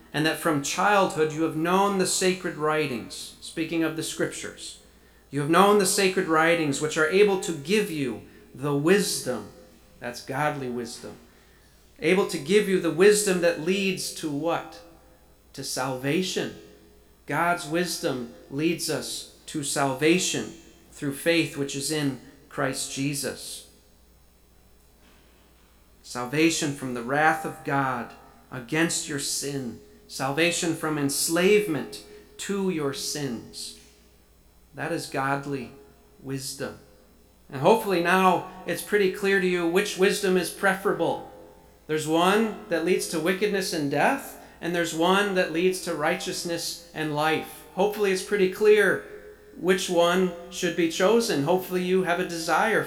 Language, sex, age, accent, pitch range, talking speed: English, male, 40-59, American, 135-185 Hz, 135 wpm